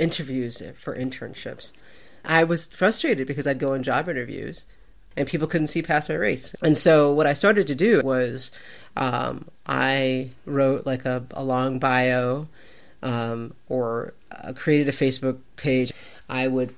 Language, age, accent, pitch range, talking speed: English, 40-59, American, 130-170 Hz, 155 wpm